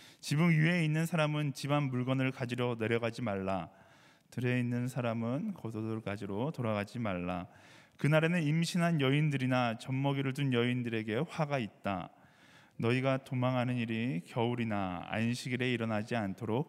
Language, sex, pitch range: Korean, male, 115-145 Hz